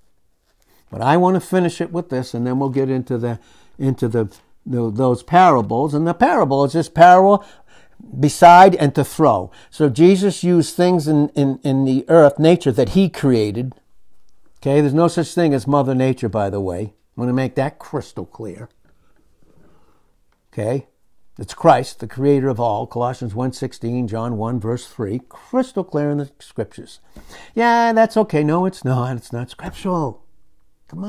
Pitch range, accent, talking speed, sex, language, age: 120-170 Hz, American, 170 wpm, male, English, 60-79